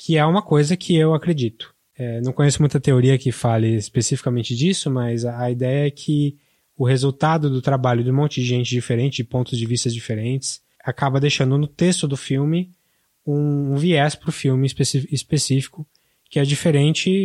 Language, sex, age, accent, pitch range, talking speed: Portuguese, male, 20-39, Brazilian, 125-155 Hz, 180 wpm